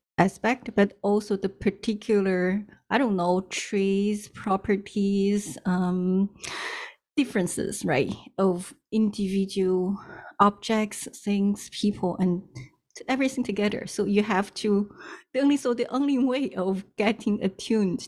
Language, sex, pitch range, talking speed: English, female, 180-215 Hz, 115 wpm